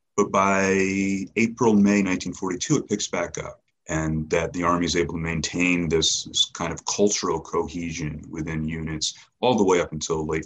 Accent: American